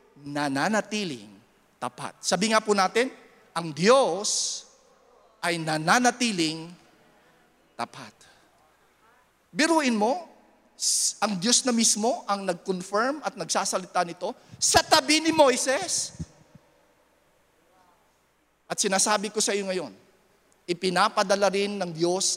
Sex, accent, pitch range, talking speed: male, Filipino, 170-235 Hz, 95 wpm